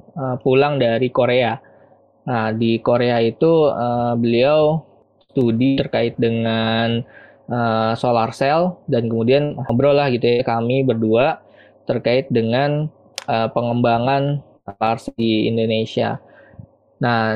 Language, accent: Indonesian, native